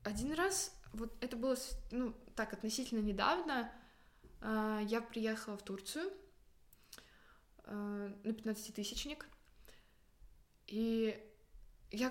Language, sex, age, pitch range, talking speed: Russian, female, 20-39, 210-250 Hz, 95 wpm